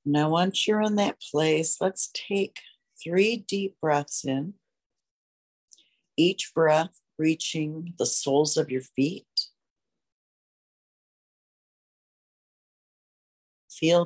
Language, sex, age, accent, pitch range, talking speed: English, female, 60-79, American, 140-165 Hz, 90 wpm